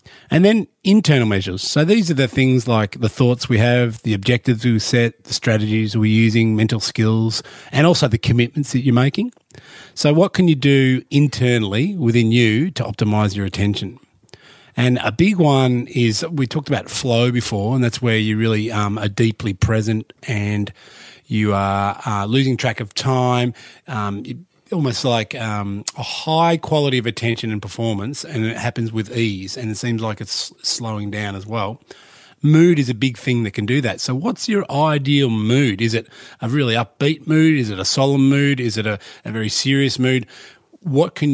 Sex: male